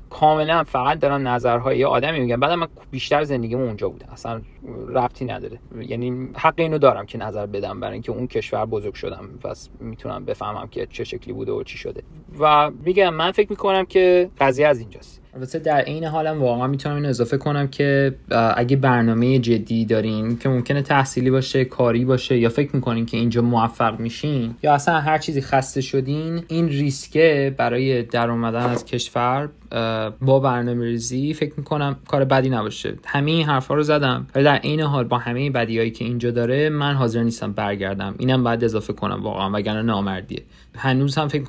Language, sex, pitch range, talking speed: Persian, male, 115-140 Hz, 175 wpm